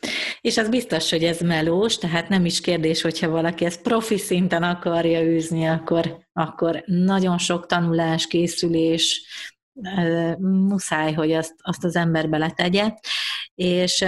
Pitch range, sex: 160-180 Hz, female